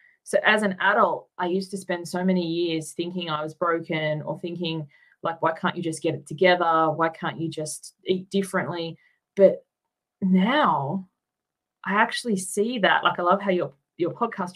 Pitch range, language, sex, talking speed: 160-190 Hz, English, female, 180 wpm